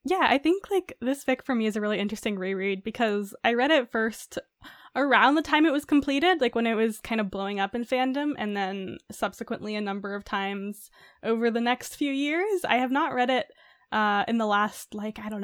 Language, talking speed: English, 225 wpm